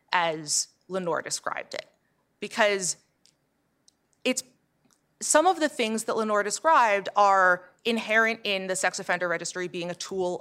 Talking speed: 135 wpm